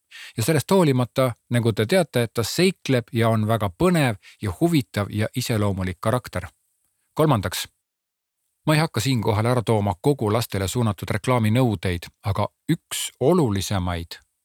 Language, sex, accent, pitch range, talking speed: Czech, male, Finnish, 100-130 Hz, 140 wpm